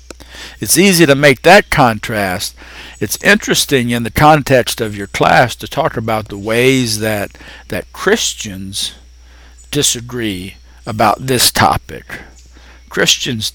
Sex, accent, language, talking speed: male, American, English, 120 wpm